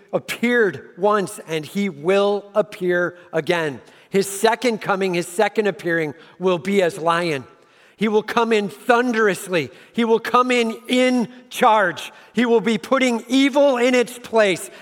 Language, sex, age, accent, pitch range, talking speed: English, male, 50-69, American, 185-240 Hz, 145 wpm